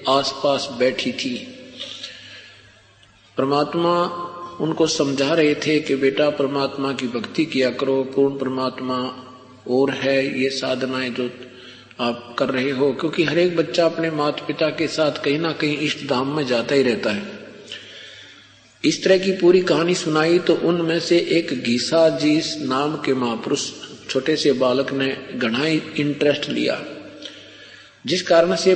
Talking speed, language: 145 wpm, Hindi